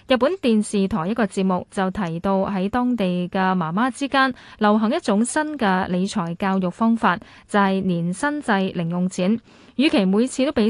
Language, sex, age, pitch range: Chinese, female, 20-39, 190-235 Hz